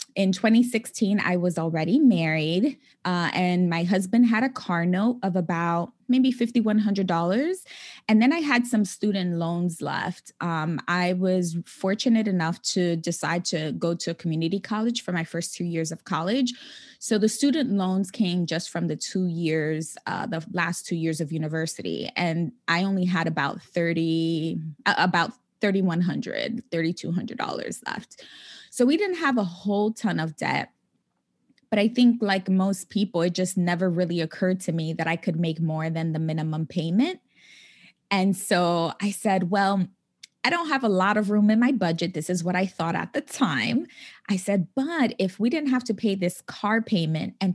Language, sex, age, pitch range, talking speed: English, female, 20-39, 170-220 Hz, 175 wpm